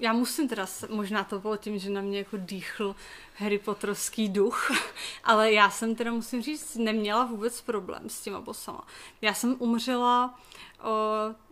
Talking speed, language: 160 wpm, Czech